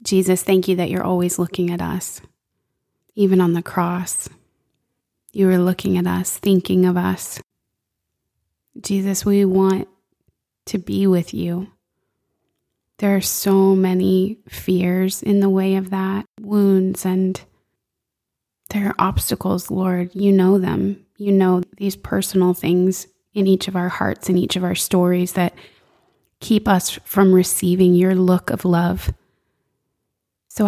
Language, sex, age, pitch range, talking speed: English, female, 20-39, 180-195 Hz, 140 wpm